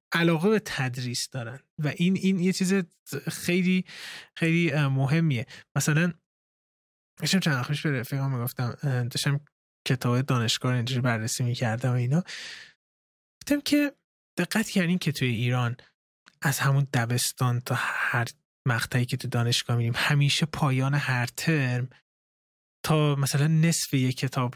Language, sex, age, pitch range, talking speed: Persian, male, 20-39, 125-165 Hz, 120 wpm